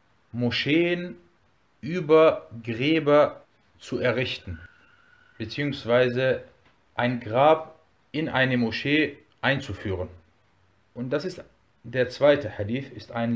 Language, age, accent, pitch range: German, 40-59, German, 110-150 Hz